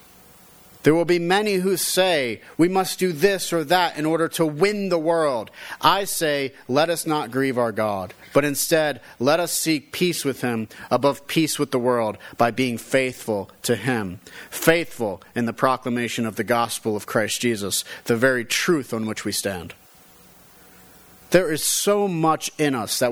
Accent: American